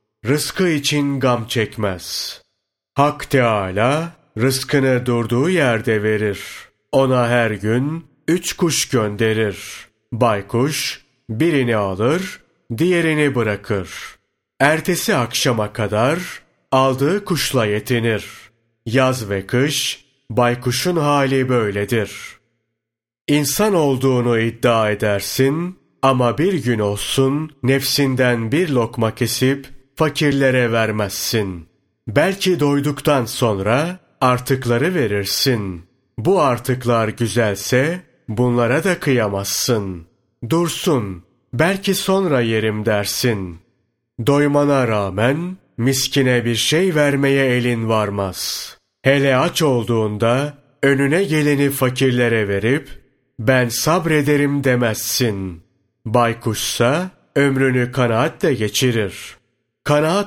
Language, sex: Turkish, male